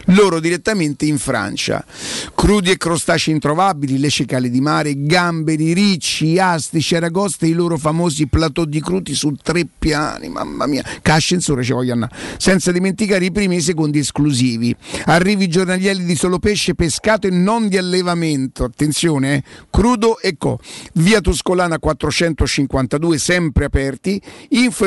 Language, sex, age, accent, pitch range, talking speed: Italian, male, 50-69, native, 140-180 Hz, 145 wpm